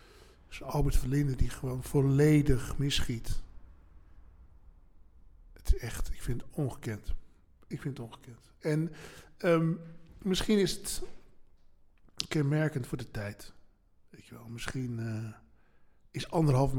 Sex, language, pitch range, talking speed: male, Dutch, 120-150 Hz, 120 wpm